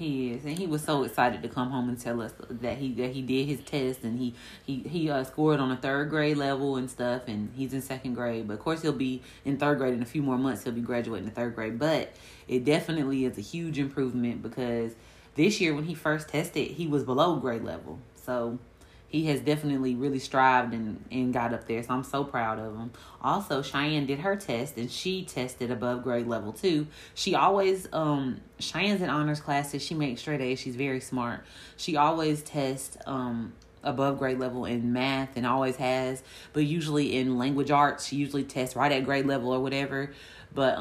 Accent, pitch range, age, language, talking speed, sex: American, 125-145 Hz, 30-49, English, 215 wpm, female